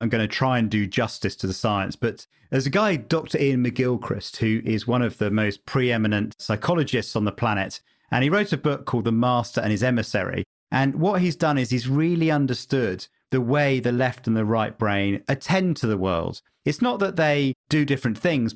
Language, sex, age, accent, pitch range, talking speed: English, male, 40-59, British, 110-135 Hz, 215 wpm